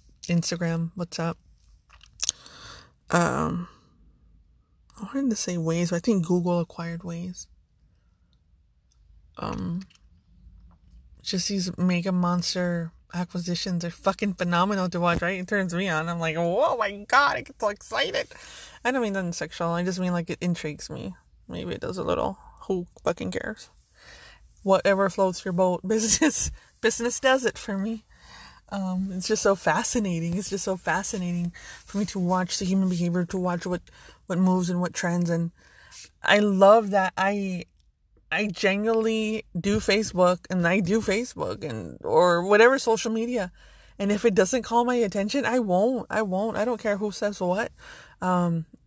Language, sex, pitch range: English, female, 170-210 Hz